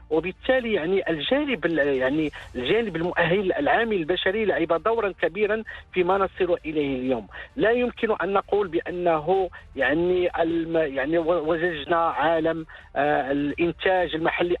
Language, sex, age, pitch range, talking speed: English, male, 50-69, 160-200 Hz, 110 wpm